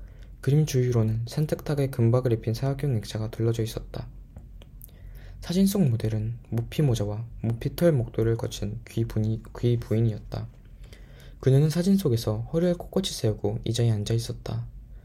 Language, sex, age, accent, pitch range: Korean, male, 20-39, native, 110-130 Hz